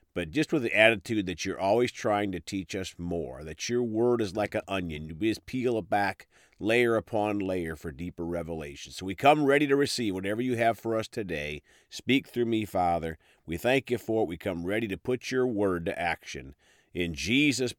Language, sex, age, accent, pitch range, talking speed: English, male, 50-69, American, 90-125 Hz, 215 wpm